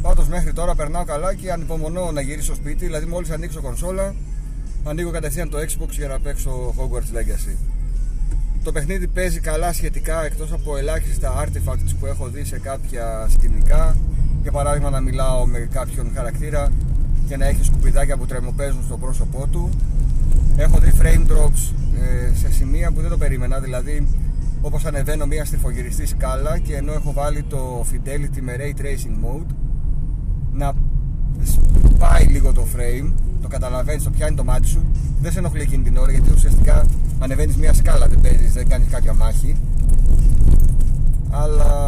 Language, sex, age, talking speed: Greek, male, 30-49, 160 wpm